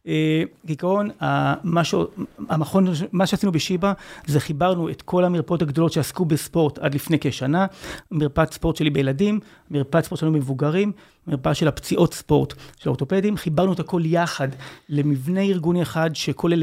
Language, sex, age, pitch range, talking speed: Hebrew, male, 30-49, 150-185 Hz, 135 wpm